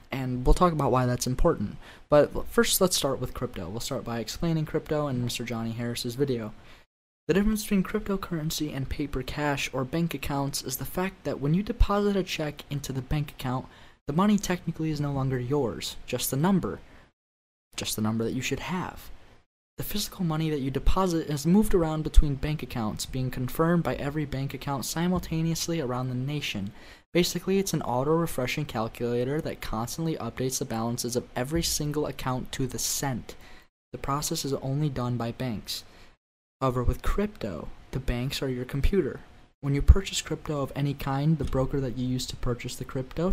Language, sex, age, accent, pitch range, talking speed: English, male, 20-39, American, 125-160 Hz, 185 wpm